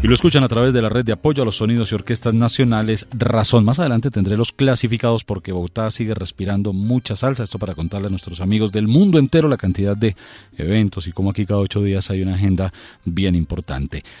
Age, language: 40-59, Spanish